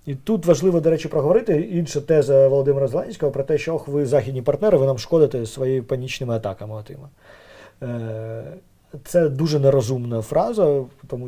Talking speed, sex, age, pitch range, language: 150 wpm, male, 40-59, 130-155 Hz, Ukrainian